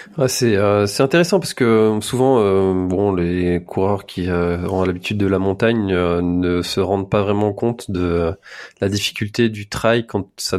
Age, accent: 20-39, French